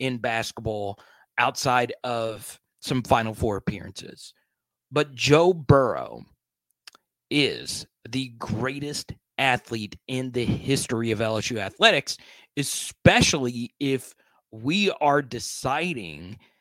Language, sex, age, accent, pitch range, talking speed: English, male, 30-49, American, 110-135 Hz, 95 wpm